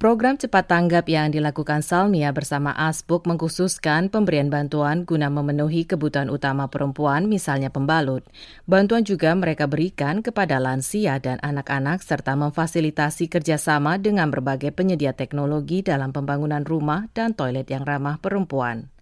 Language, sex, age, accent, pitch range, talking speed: Indonesian, female, 20-39, native, 140-175 Hz, 130 wpm